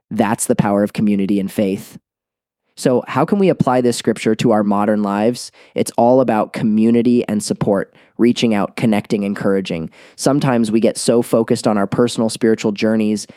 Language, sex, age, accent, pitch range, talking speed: English, male, 20-39, American, 105-120 Hz, 170 wpm